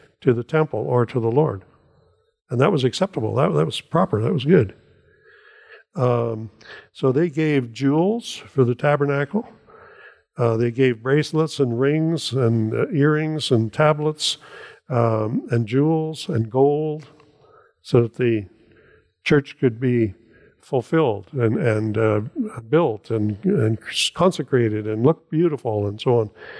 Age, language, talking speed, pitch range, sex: 60-79, English, 140 wpm, 120-150 Hz, male